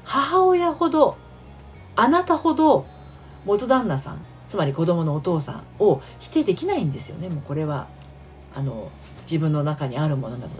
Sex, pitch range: female, 135-220 Hz